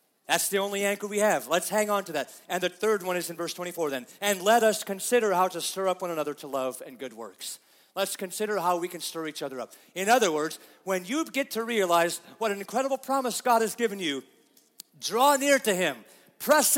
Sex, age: male, 40-59